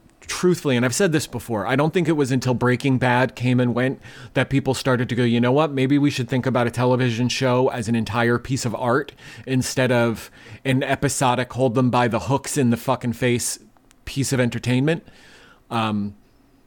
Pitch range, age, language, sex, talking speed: 120-140 Hz, 30-49, English, male, 200 wpm